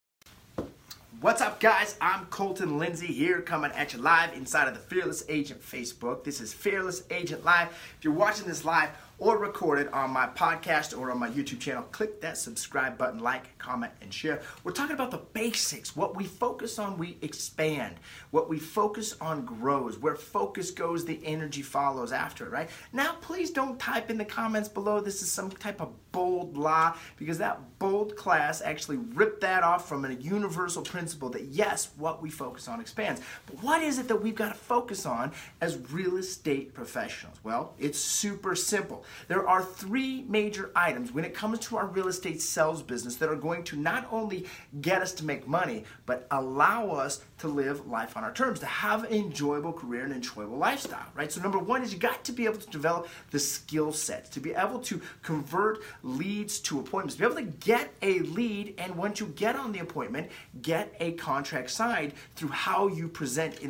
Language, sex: English, male